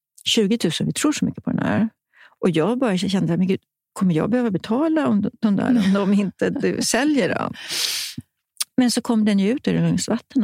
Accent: native